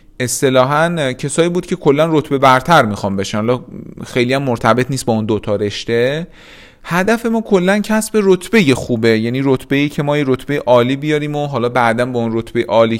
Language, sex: Persian, male